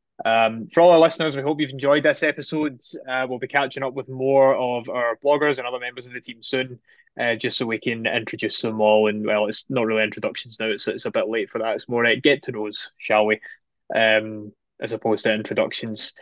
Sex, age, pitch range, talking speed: male, 20-39, 115-140 Hz, 235 wpm